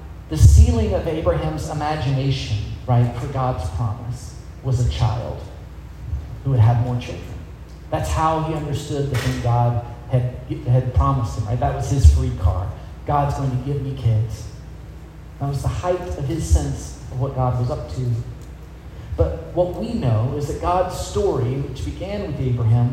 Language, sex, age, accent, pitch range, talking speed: English, male, 40-59, American, 110-150 Hz, 170 wpm